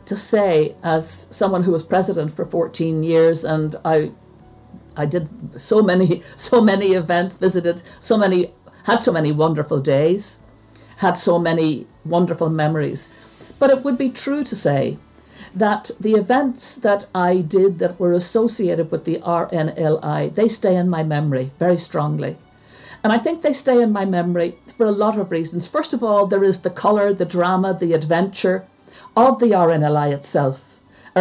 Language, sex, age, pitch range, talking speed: English, female, 60-79, 160-205 Hz, 165 wpm